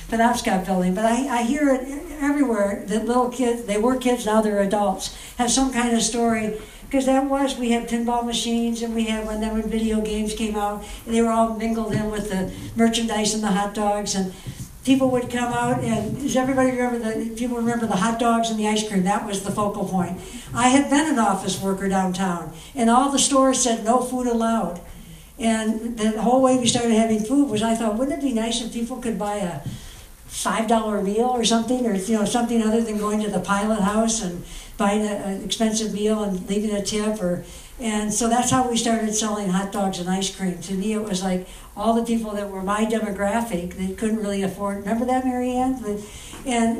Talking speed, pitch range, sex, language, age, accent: 215 wpm, 205-235 Hz, female, English, 60-79, American